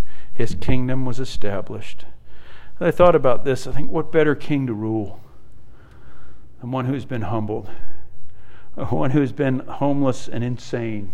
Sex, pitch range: male, 105-145 Hz